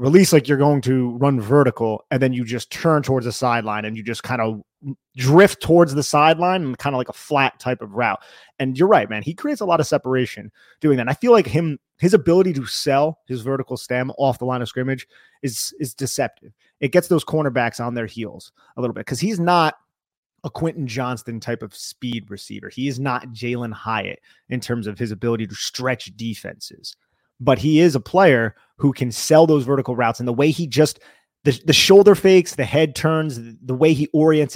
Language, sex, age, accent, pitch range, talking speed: English, male, 30-49, American, 120-150 Hz, 215 wpm